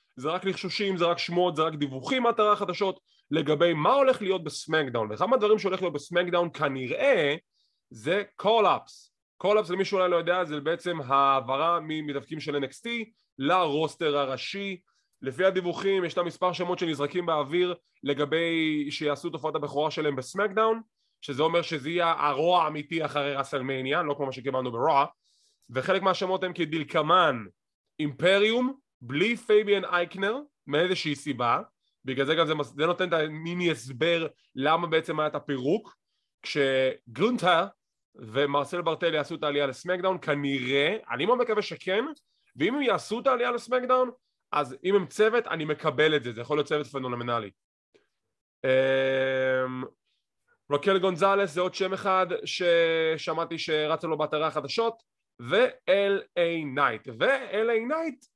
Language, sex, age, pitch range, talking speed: English, male, 20-39, 145-190 Hz, 120 wpm